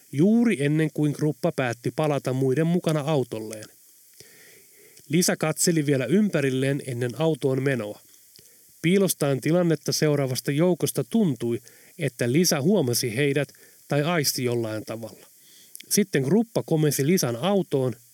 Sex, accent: male, native